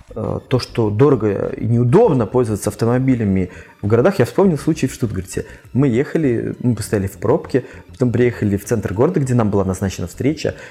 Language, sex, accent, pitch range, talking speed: Russian, male, native, 105-135 Hz, 170 wpm